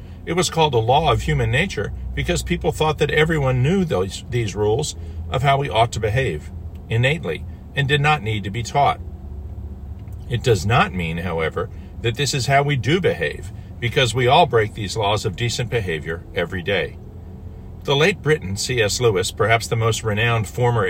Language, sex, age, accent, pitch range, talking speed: English, male, 50-69, American, 90-135 Hz, 180 wpm